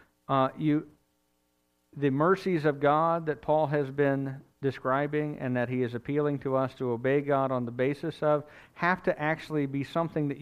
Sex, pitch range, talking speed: male, 125-155 Hz, 180 wpm